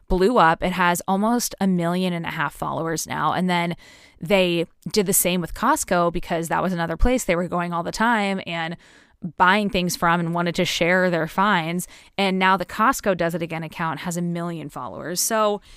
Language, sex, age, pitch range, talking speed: English, female, 20-39, 170-205 Hz, 205 wpm